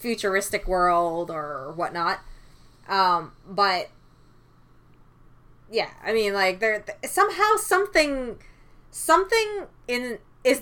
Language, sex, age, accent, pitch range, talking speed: English, female, 20-39, American, 175-225 Hz, 95 wpm